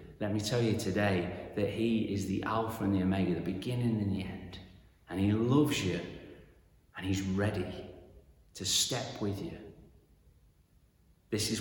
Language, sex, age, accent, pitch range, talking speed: English, male, 30-49, British, 90-105 Hz, 160 wpm